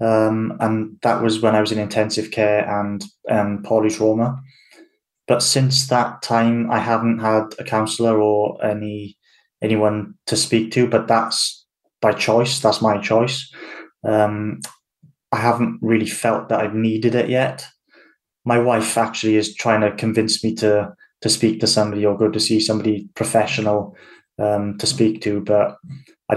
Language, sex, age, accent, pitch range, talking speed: English, male, 20-39, British, 105-115 Hz, 160 wpm